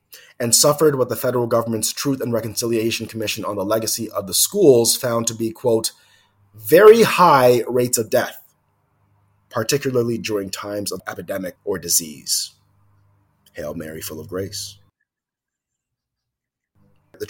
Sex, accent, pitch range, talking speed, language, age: male, American, 90-115 Hz, 130 wpm, English, 30-49